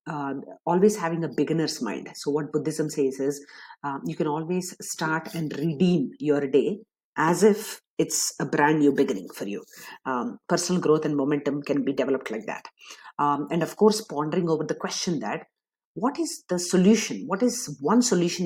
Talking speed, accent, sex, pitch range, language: 180 wpm, Indian, female, 145-195 Hz, English